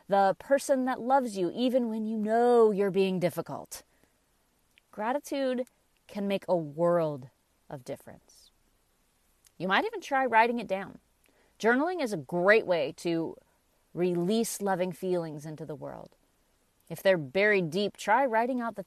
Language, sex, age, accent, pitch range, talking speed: English, female, 30-49, American, 175-225 Hz, 145 wpm